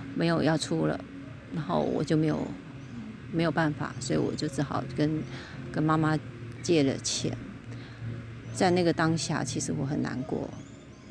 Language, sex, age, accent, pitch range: Chinese, female, 30-49, native, 130-160 Hz